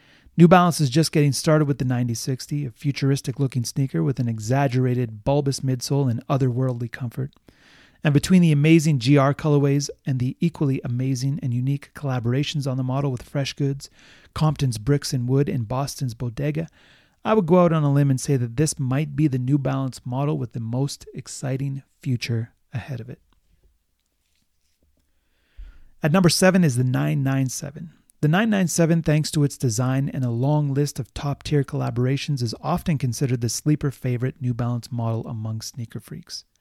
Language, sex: English, male